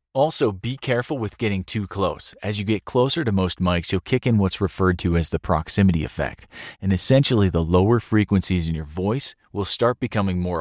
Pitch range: 95-120 Hz